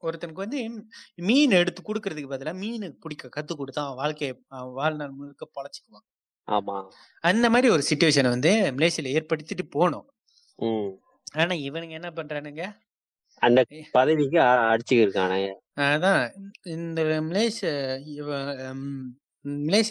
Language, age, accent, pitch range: Tamil, 20-39, native, 140-200 Hz